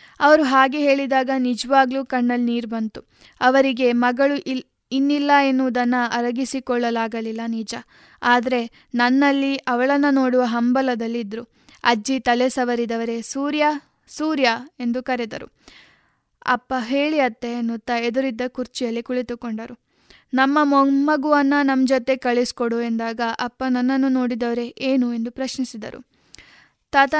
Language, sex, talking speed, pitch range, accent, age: Kannada, female, 100 wpm, 240-275 Hz, native, 20-39